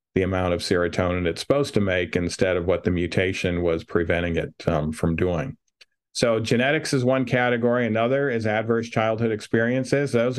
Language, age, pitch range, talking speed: English, 50-69, 95-115 Hz, 175 wpm